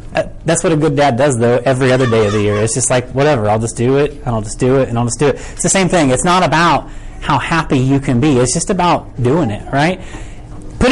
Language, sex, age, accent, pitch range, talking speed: English, male, 30-49, American, 125-170 Hz, 280 wpm